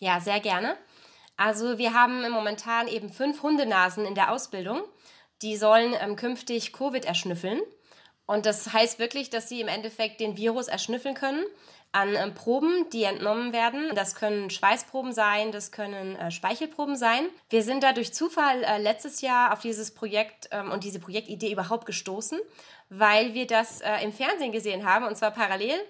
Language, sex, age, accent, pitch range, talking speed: German, female, 20-39, German, 210-255 Hz, 170 wpm